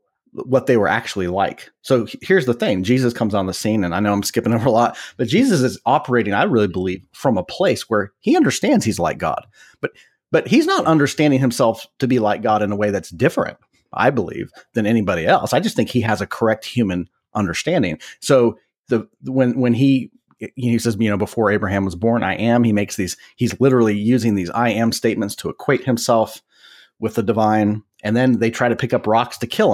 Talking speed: 220 wpm